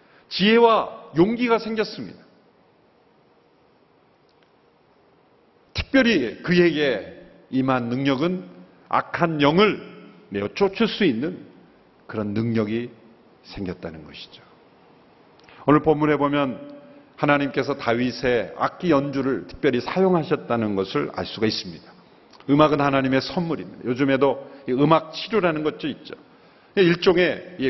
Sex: male